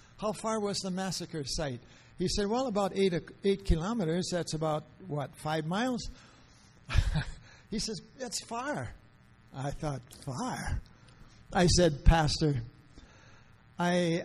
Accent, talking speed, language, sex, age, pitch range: American, 120 wpm, English, male, 60-79, 125-170 Hz